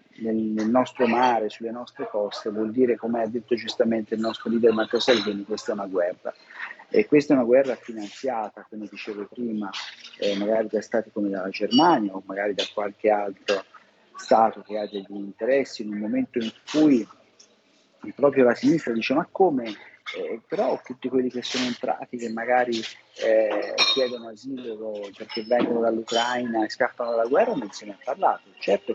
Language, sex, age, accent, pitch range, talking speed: Italian, male, 40-59, native, 110-130 Hz, 175 wpm